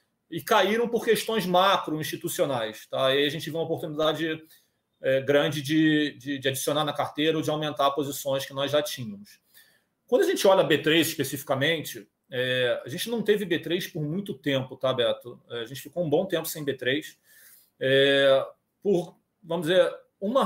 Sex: male